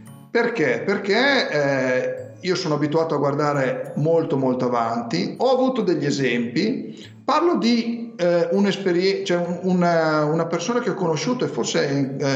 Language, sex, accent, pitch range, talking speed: Italian, male, native, 140-210 Hz, 135 wpm